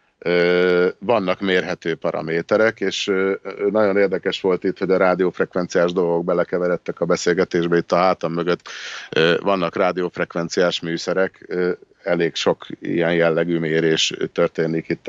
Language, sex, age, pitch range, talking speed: Hungarian, male, 50-69, 85-95 Hz, 115 wpm